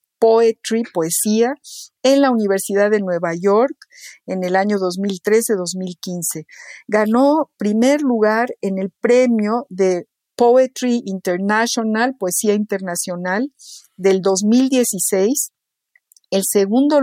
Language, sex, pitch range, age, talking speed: Spanish, female, 185-230 Hz, 50-69, 95 wpm